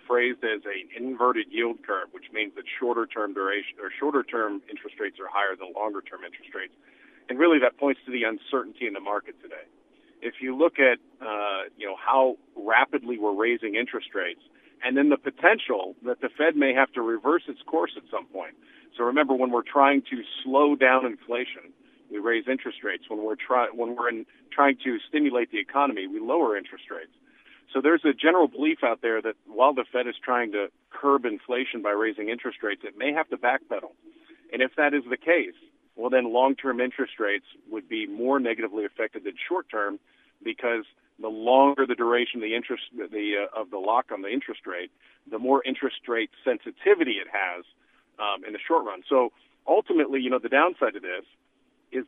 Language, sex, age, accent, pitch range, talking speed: English, male, 50-69, American, 120-170 Hz, 190 wpm